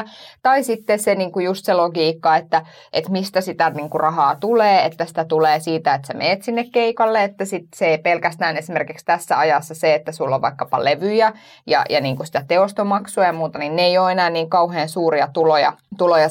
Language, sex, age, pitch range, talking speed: Finnish, female, 20-39, 160-215 Hz, 210 wpm